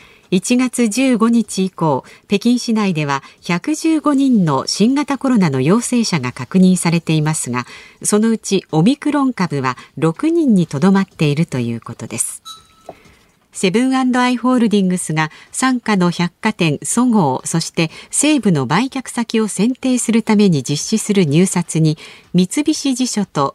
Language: Japanese